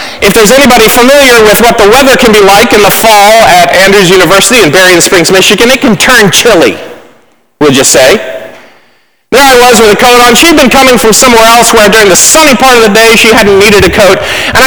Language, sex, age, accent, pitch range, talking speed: English, male, 40-59, American, 210-275 Hz, 230 wpm